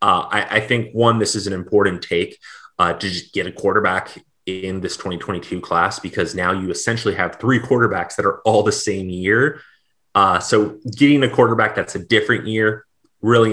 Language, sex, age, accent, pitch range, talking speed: English, male, 30-49, American, 90-110 Hz, 190 wpm